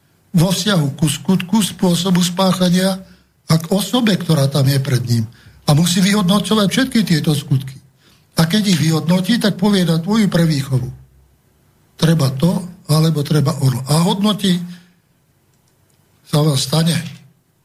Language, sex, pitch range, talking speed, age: Slovak, male, 135-175 Hz, 130 wpm, 60-79